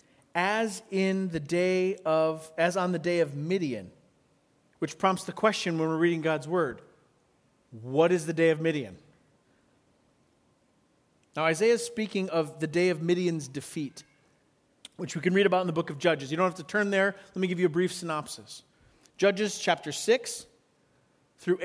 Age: 40-59